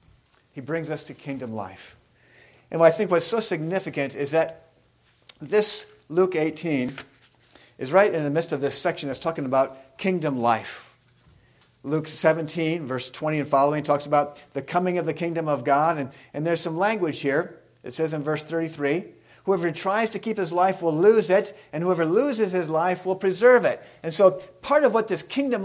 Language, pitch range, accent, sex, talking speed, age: English, 150-200 Hz, American, male, 185 wpm, 50-69